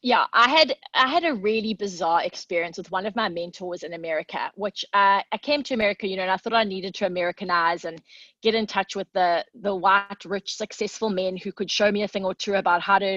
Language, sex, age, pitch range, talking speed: English, female, 20-39, 190-250 Hz, 240 wpm